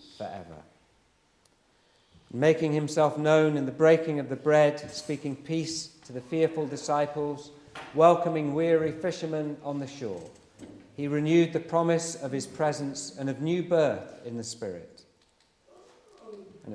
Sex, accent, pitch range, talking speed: male, British, 130-160 Hz, 135 wpm